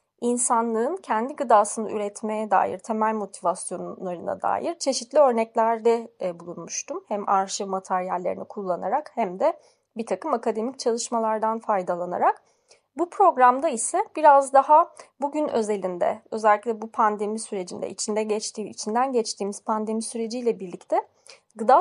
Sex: female